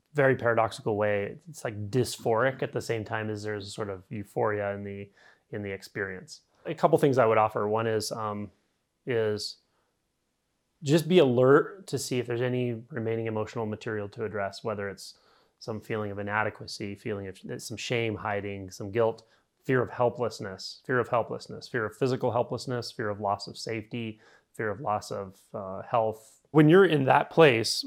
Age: 30-49